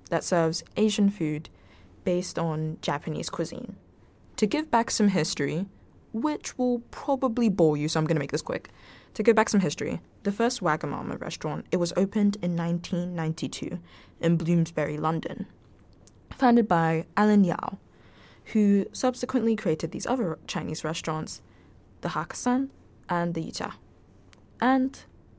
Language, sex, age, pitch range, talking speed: English, female, 10-29, 145-200 Hz, 140 wpm